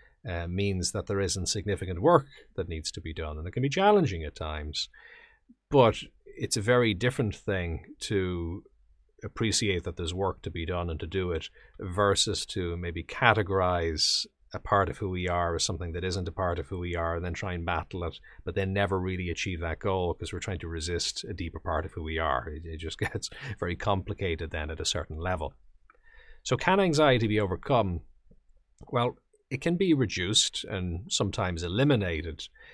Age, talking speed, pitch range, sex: 40-59, 195 wpm, 85-105 Hz, male